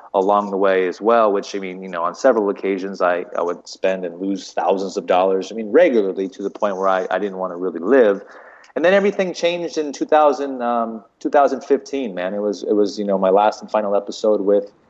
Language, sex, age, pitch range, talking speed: English, male, 30-49, 95-110 Hz, 230 wpm